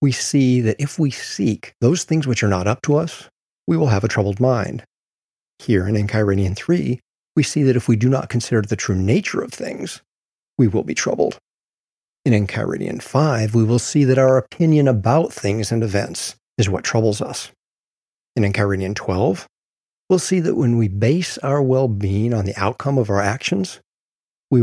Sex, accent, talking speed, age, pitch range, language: male, American, 185 wpm, 50-69, 105-140 Hz, English